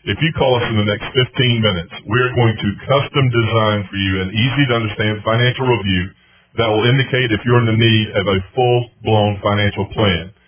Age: 40-59